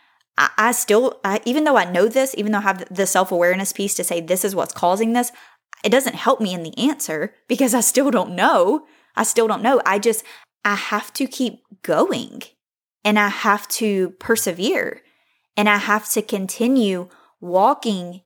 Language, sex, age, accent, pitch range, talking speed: English, female, 20-39, American, 190-240 Hz, 180 wpm